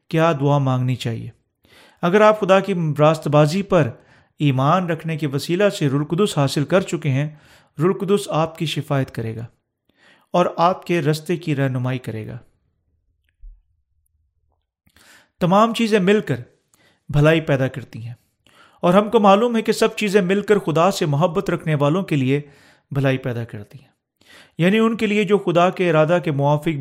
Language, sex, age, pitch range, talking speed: Urdu, male, 40-59, 135-175 Hz, 170 wpm